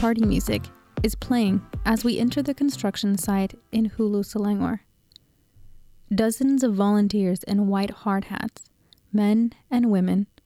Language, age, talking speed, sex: Malay, 20-39, 130 wpm, female